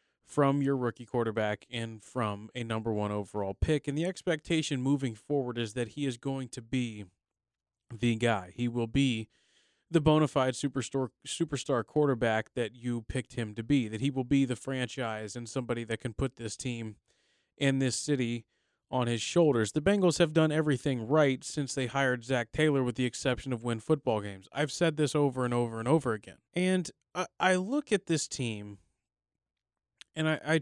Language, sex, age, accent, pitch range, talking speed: English, male, 20-39, American, 120-150 Hz, 190 wpm